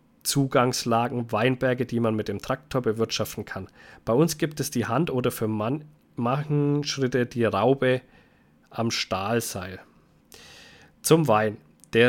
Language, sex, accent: German, male, German